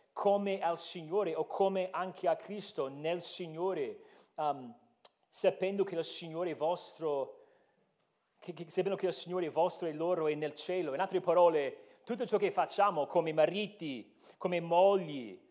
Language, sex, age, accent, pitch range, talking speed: Italian, male, 40-59, native, 155-210 Hz, 160 wpm